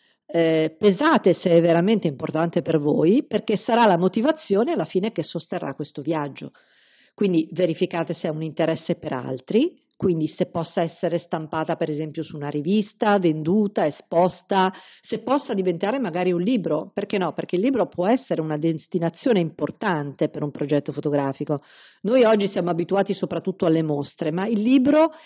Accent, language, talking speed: native, Italian, 160 wpm